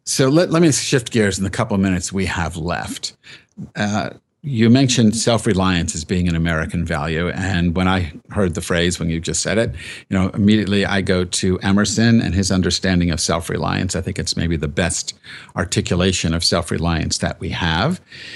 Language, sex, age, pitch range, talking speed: English, male, 50-69, 85-110 Hz, 190 wpm